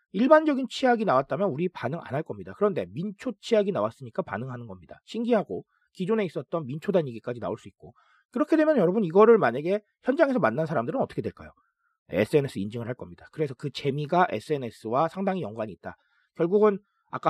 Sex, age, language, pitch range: male, 40-59, Korean, 135-215 Hz